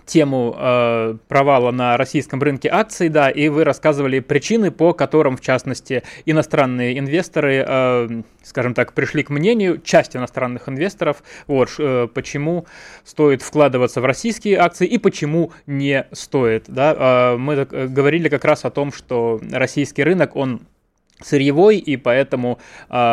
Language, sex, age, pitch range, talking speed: Russian, male, 20-39, 130-155 Hz, 150 wpm